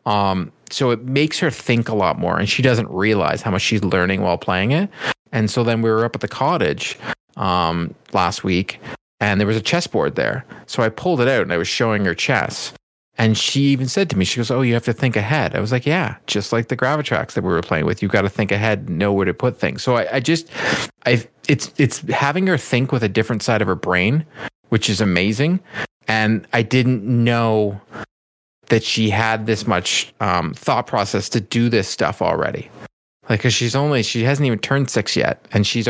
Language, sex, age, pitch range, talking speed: English, male, 40-59, 105-130 Hz, 225 wpm